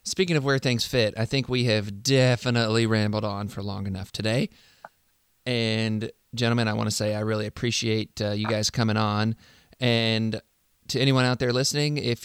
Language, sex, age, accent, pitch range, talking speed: English, male, 20-39, American, 105-125 Hz, 180 wpm